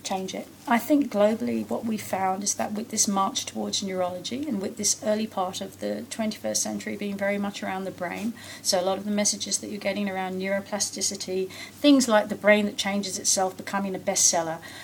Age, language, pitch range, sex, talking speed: 40-59, English, 185-215 Hz, female, 205 wpm